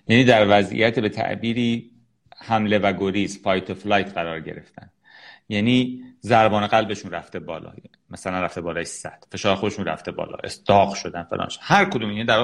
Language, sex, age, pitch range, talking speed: Persian, male, 30-49, 100-135 Hz, 160 wpm